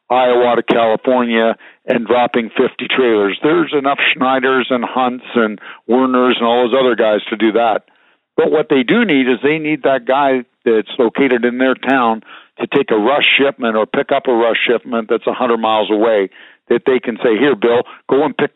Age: 50-69